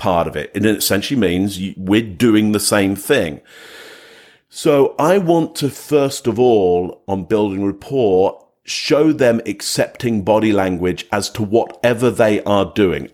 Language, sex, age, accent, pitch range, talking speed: English, male, 50-69, British, 95-125 Hz, 150 wpm